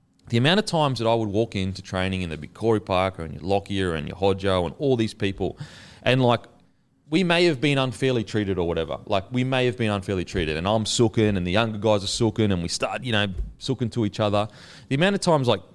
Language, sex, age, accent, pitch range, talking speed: English, male, 30-49, Australian, 95-125 Hz, 250 wpm